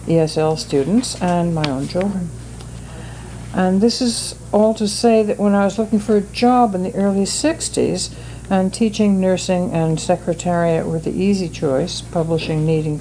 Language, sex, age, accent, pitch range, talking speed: English, female, 60-79, American, 145-185 Hz, 160 wpm